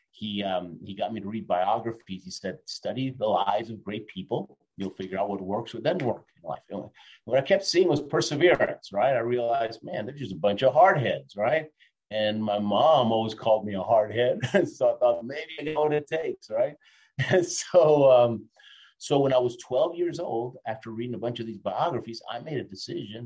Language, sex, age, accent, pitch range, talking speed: English, male, 50-69, American, 100-130 Hz, 215 wpm